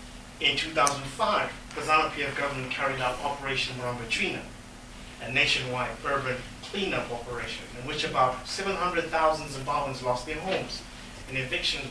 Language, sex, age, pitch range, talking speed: English, male, 30-49, 125-155 Hz, 120 wpm